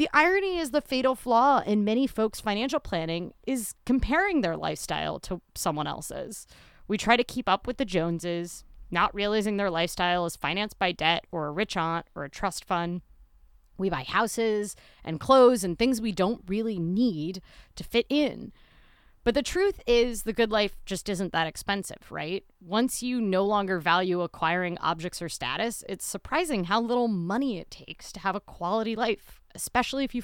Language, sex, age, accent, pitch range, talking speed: English, female, 30-49, American, 180-255 Hz, 185 wpm